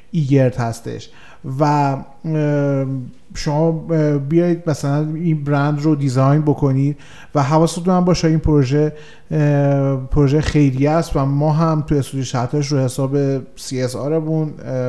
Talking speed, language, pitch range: 120 wpm, Persian, 130-155 Hz